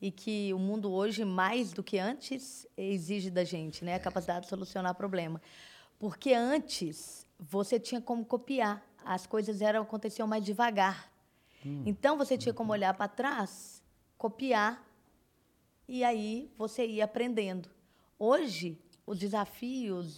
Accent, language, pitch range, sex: Brazilian, Portuguese, 185-230 Hz, female